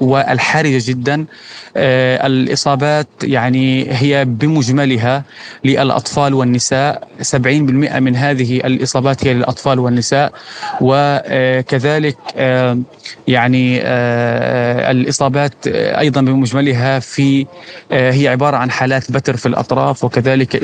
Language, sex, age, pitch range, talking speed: Arabic, male, 20-39, 130-140 Hz, 95 wpm